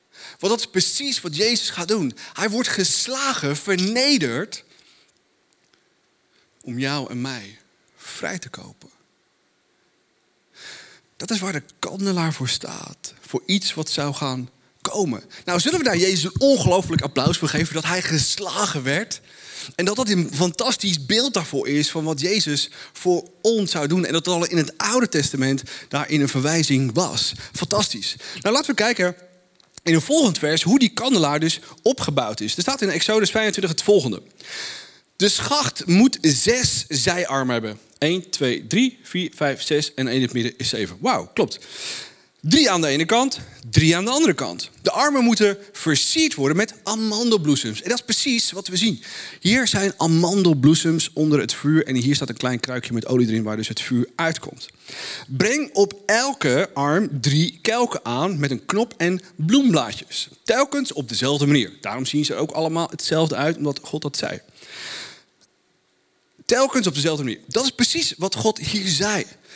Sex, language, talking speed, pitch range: male, Dutch, 170 wpm, 145-210 Hz